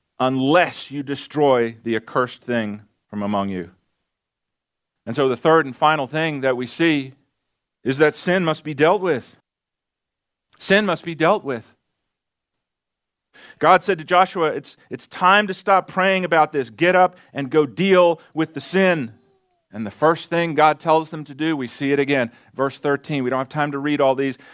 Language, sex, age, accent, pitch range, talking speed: English, male, 40-59, American, 135-180 Hz, 180 wpm